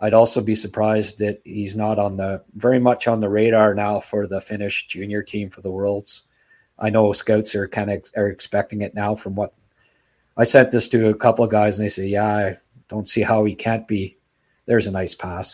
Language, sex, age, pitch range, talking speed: English, male, 50-69, 100-115 Hz, 230 wpm